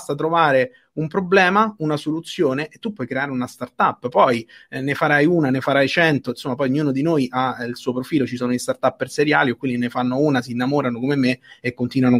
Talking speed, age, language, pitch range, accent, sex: 235 wpm, 30-49, Italian, 125-155 Hz, native, male